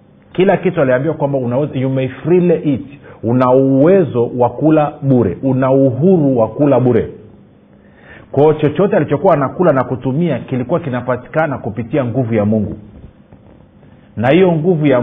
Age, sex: 40-59, male